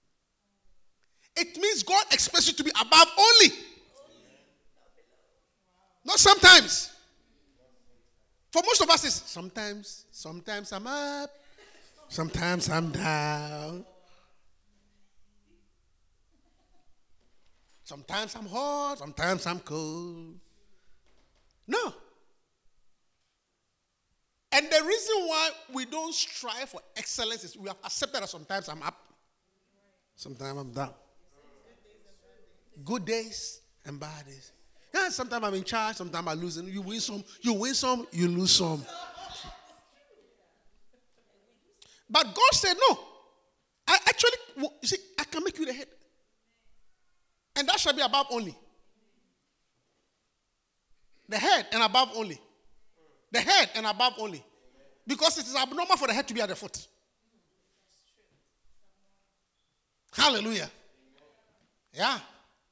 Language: English